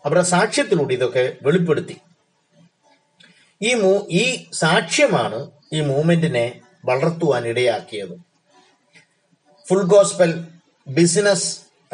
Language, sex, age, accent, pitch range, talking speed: Malayalam, male, 30-49, native, 150-195 Hz, 55 wpm